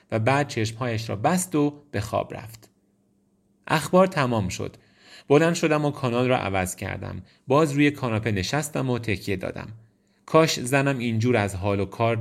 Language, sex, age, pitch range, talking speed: Persian, male, 30-49, 105-145 Hz, 160 wpm